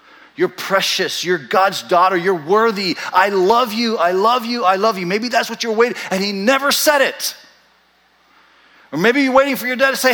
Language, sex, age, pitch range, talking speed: English, male, 40-59, 180-250 Hz, 205 wpm